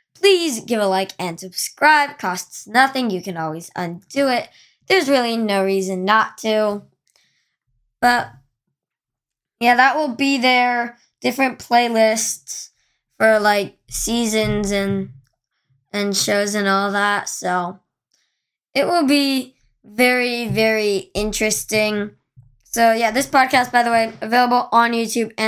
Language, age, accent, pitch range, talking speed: English, 20-39, American, 210-250 Hz, 125 wpm